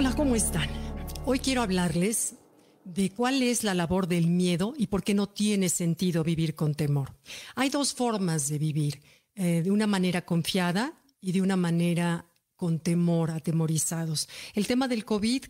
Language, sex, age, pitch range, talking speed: Spanish, female, 50-69, 170-205 Hz, 165 wpm